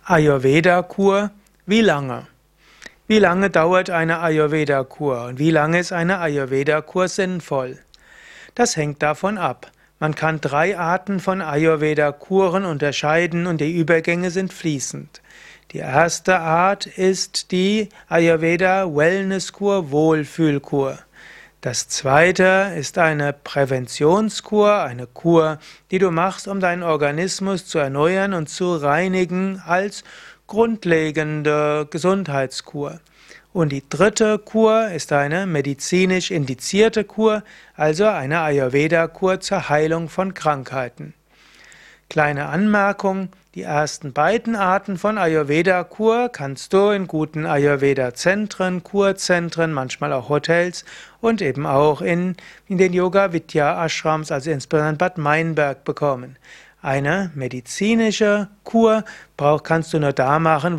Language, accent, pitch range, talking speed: German, German, 150-190 Hz, 115 wpm